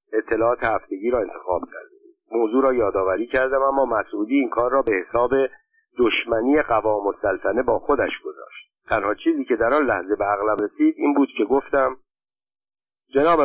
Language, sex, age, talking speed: Persian, male, 50-69, 165 wpm